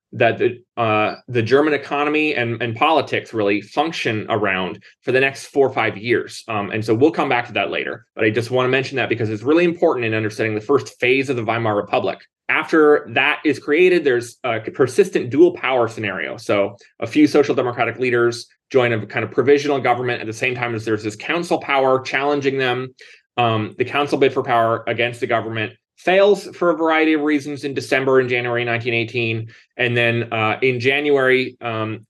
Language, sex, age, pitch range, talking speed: English, male, 20-39, 110-145 Hz, 200 wpm